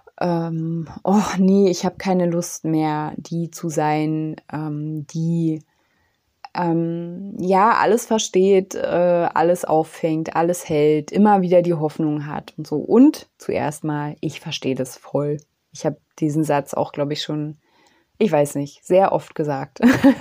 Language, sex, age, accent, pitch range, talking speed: German, female, 20-39, German, 155-190 Hz, 150 wpm